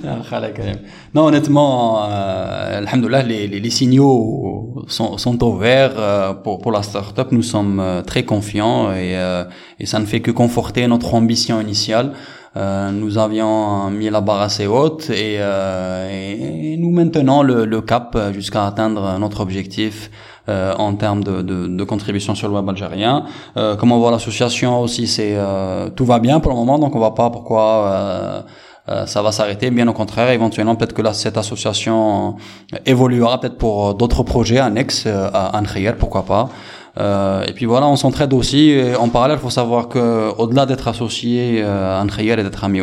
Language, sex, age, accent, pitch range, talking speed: French, male, 20-39, French, 100-120 Hz, 180 wpm